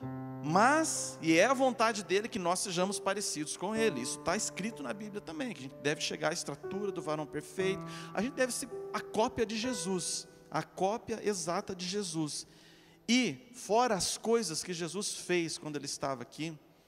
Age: 40-59